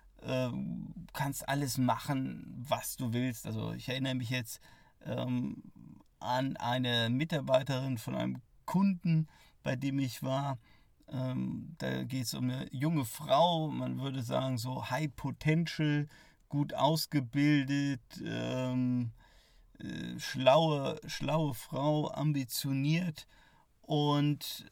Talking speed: 110 wpm